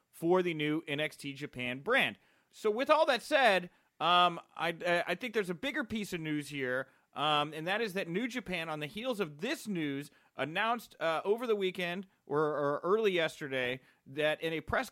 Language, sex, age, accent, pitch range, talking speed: English, male, 30-49, American, 145-185 Hz, 195 wpm